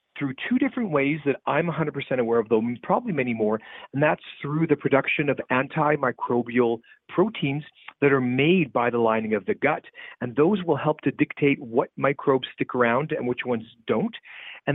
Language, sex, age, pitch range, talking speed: English, male, 40-59, 125-165 Hz, 185 wpm